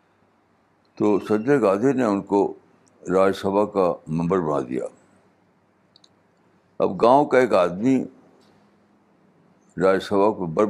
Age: 60-79